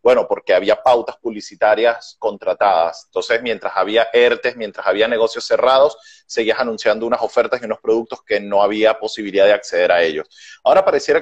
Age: 30-49